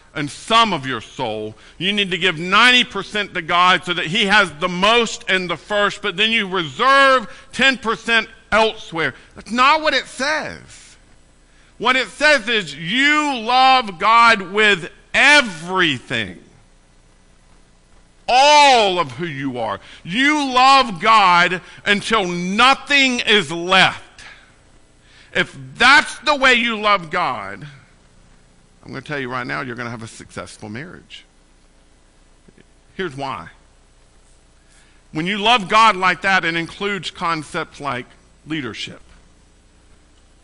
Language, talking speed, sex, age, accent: English, 130 wpm, male, 50-69, American